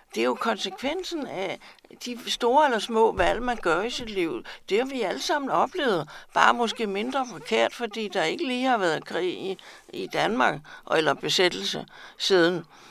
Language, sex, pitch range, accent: Danish, female, 185-255 Hz, native